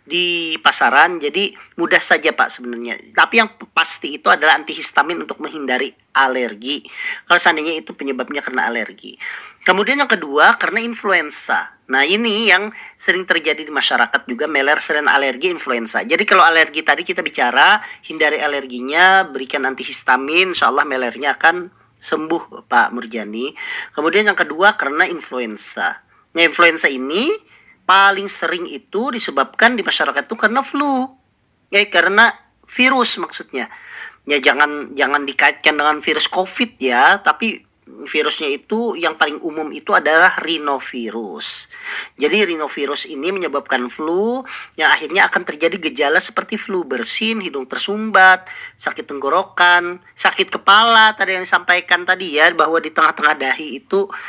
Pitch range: 150-220 Hz